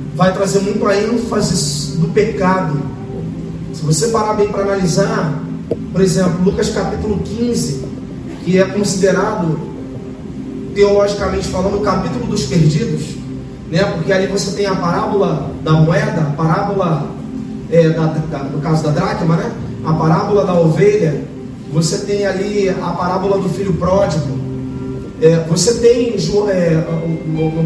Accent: Brazilian